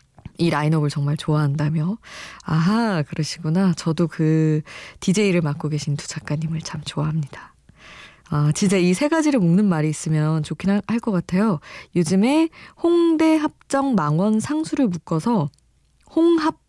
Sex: female